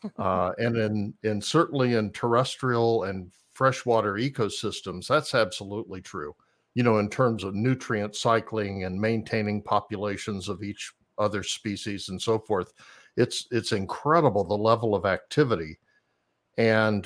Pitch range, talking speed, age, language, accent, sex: 100-125 Hz, 135 wpm, 60-79, English, American, male